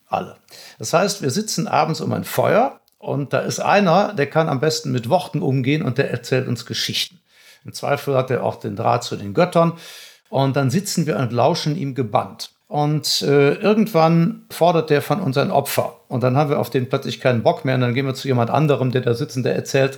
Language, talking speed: German, 225 wpm